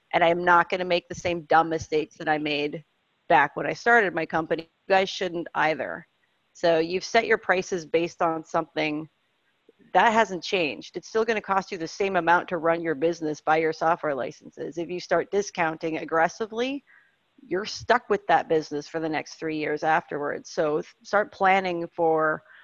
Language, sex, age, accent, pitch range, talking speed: English, female, 30-49, American, 160-190 Hz, 185 wpm